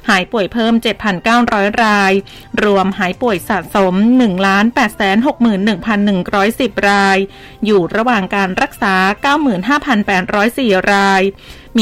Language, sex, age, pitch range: Thai, female, 20-39, 200-245 Hz